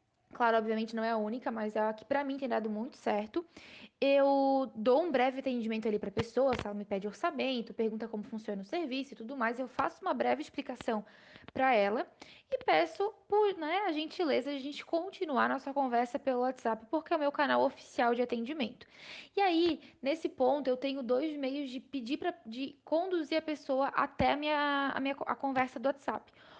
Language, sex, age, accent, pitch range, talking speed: Portuguese, female, 10-29, Brazilian, 230-290 Hz, 205 wpm